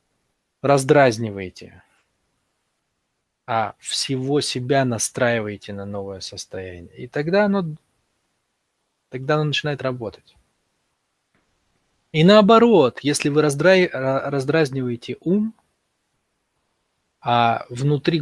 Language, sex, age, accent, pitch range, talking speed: Russian, male, 20-39, native, 115-145 Hz, 80 wpm